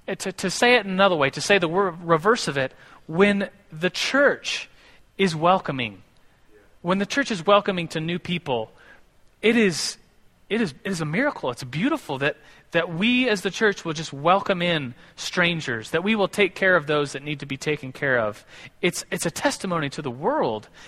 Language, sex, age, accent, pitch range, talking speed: English, male, 30-49, American, 145-195 Hz, 200 wpm